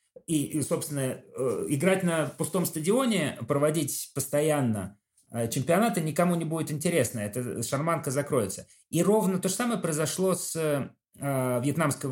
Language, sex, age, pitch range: Russian, male, 30-49, 125-170 Hz